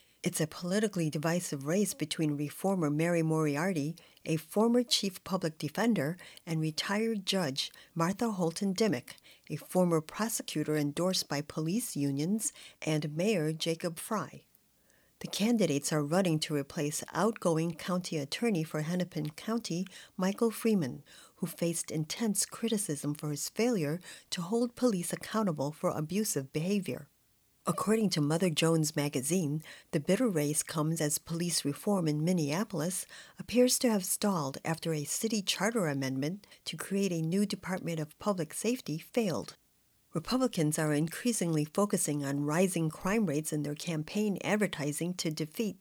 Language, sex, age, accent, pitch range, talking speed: English, female, 50-69, American, 155-200 Hz, 140 wpm